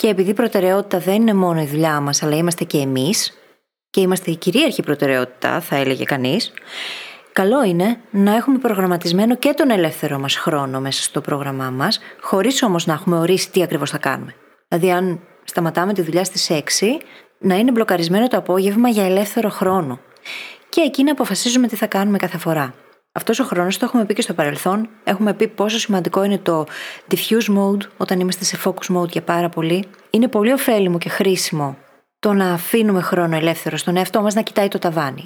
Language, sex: Greek, female